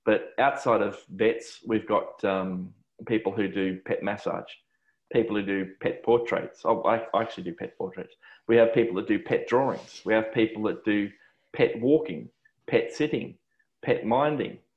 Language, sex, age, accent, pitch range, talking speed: English, male, 20-39, Australian, 105-120 Hz, 165 wpm